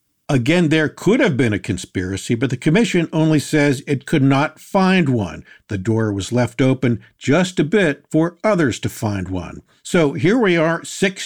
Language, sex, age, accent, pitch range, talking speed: English, male, 50-69, American, 120-165 Hz, 185 wpm